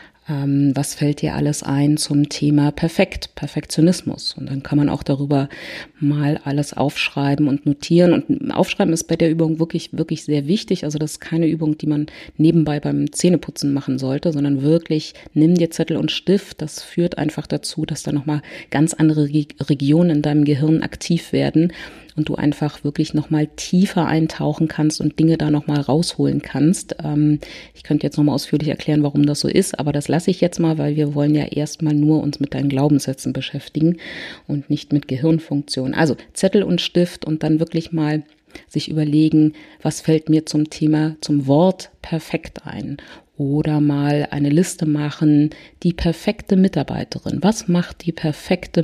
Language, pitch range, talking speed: German, 145-165 Hz, 175 wpm